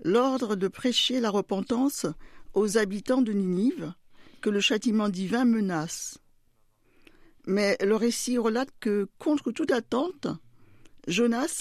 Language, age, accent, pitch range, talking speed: French, 50-69, French, 195-255 Hz, 120 wpm